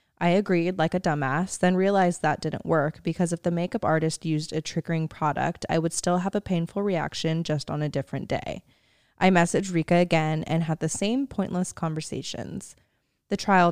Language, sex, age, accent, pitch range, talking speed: English, female, 10-29, American, 155-185 Hz, 190 wpm